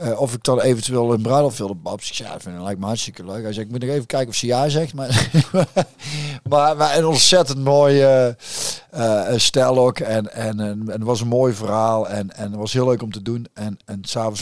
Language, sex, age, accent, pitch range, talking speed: Dutch, male, 50-69, Dutch, 105-135 Hz, 245 wpm